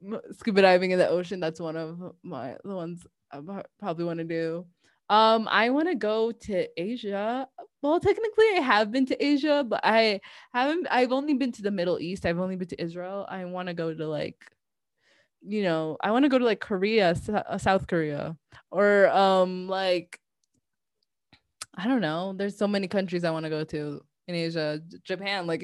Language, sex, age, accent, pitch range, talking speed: English, female, 20-39, American, 165-215 Hz, 190 wpm